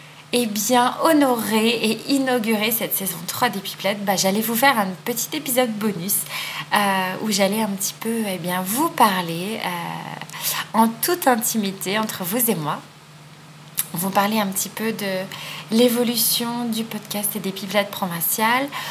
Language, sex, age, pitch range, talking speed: French, female, 30-49, 190-230 Hz, 160 wpm